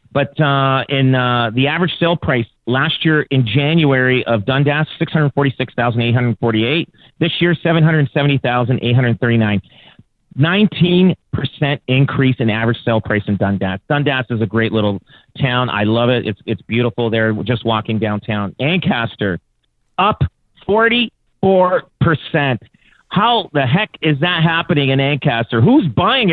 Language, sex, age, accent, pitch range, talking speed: English, male, 40-59, American, 120-155 Hz, 170 wpm